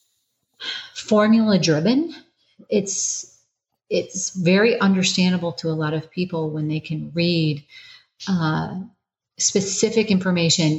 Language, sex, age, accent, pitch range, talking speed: English, female, 40-59, American, 160-195 Hz, 100 wpm